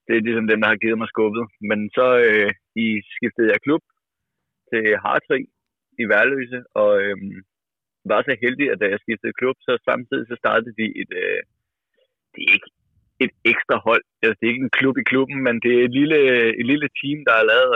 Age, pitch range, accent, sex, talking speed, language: 30-49, 110-140 Hz, native, male, 210 wpm, Danish